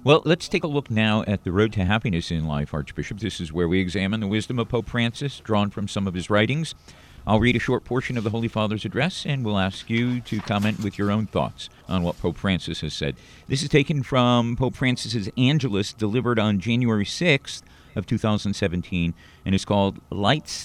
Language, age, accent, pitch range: English, 50-69, American, 100-130 Hz